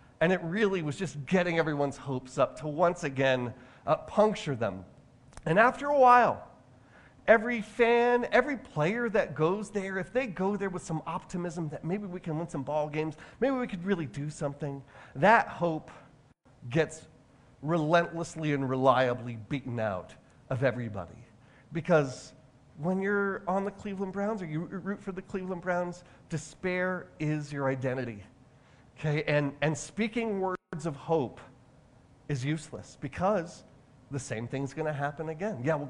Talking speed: 155 wpm